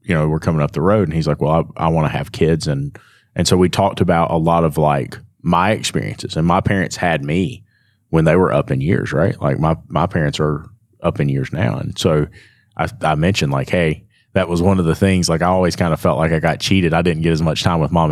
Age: 30-49